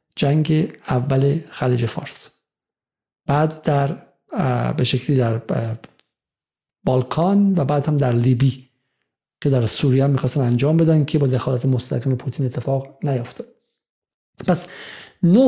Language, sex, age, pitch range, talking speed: Persian, male, 50-69, 135-180 Hz, 110 wpm